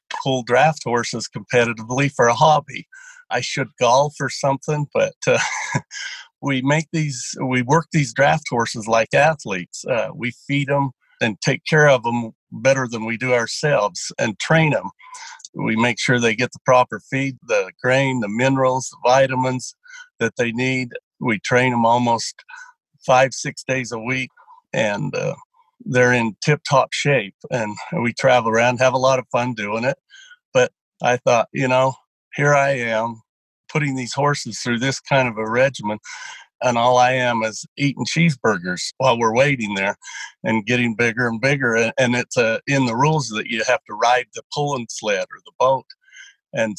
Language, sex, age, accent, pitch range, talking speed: English, male, 60-79, American, 120-155 Hz, 175 wpm